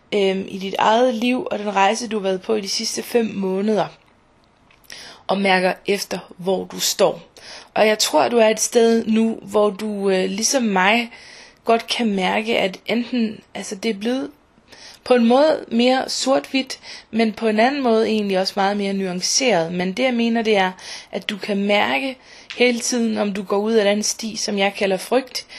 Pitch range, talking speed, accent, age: 195-230 Hz, 190 wpm, native, 20-39